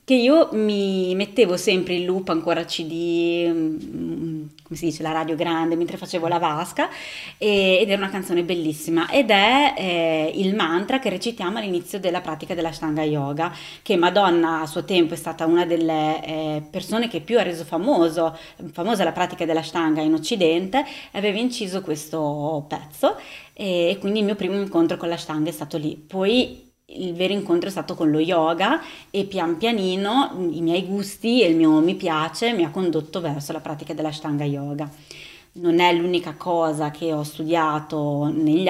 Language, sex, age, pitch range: Italian, female, 20-39, 160-185 Hz